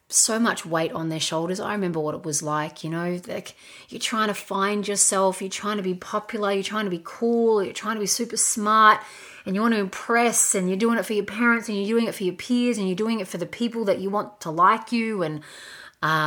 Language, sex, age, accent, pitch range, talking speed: English, female, 30-49, Australian, 165-205 Hz, 260 wpm